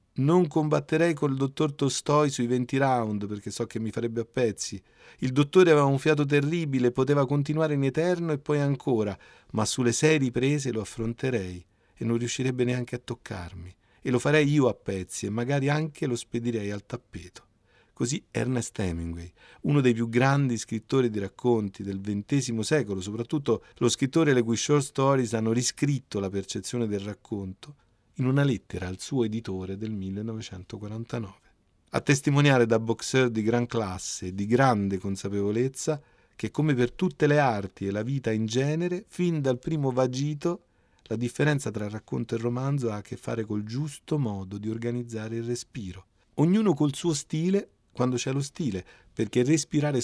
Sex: male